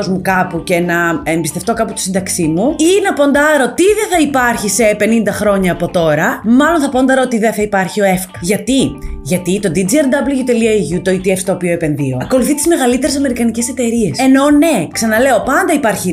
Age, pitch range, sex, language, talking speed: 20-39, 195-270 Hz, female, Greek, 180 wpm